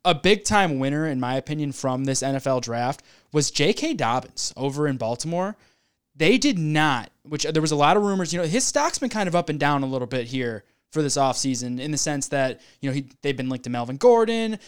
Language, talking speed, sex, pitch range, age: English, 225 wpm, male, 135-180 Hz, 20-39